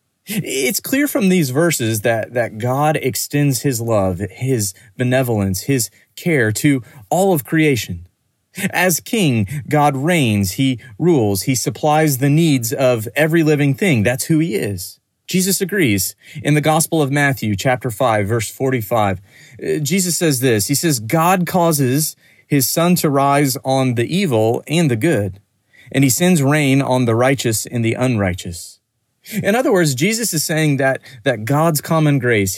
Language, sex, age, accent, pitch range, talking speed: English, male, 30-49, American, 115-155 Hz, 160 wpm